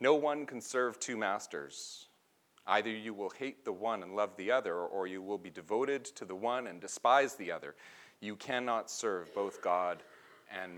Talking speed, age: 190 wpm, 40-59